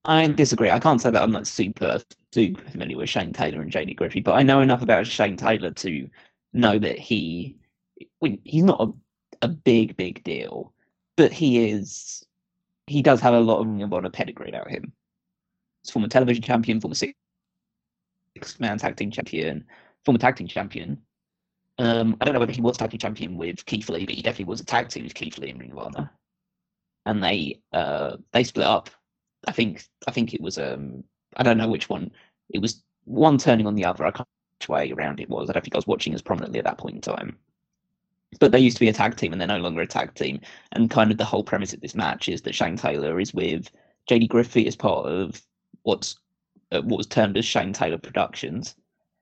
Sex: male